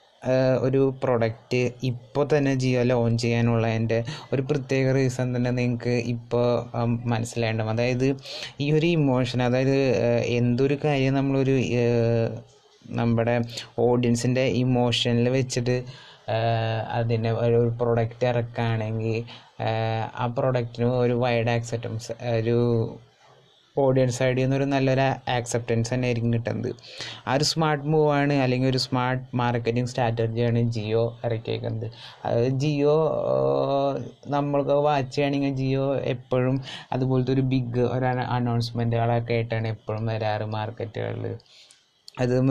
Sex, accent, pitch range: male, native, 115-130 Hz